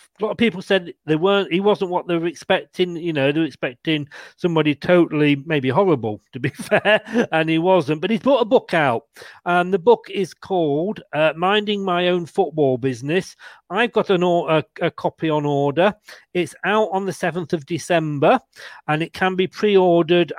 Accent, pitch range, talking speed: British, 155-195 Hz, 190 wpm